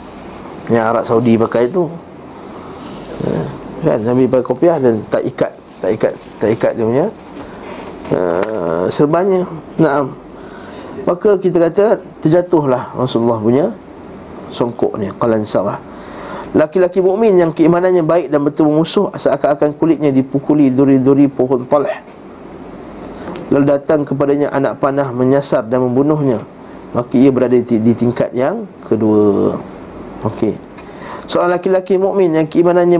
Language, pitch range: Malay, 130-170 Hz